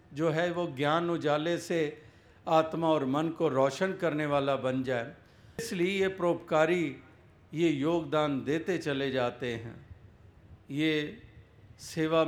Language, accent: Hindi, native